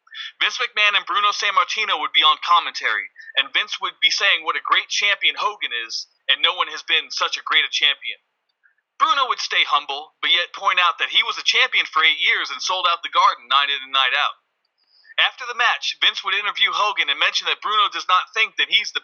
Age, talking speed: 30-49, 230 wpm